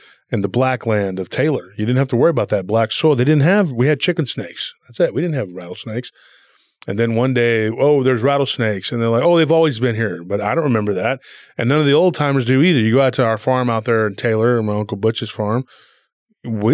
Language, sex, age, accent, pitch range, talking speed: English, male, 30-49, American, 115-150 Hz, 255 wpm